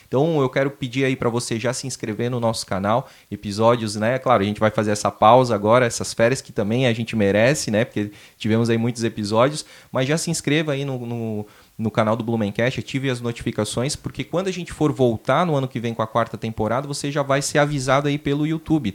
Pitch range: 110-135 Hz